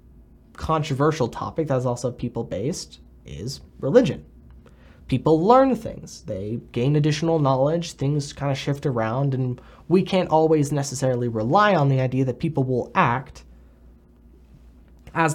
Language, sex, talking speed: English, male, 135 wpm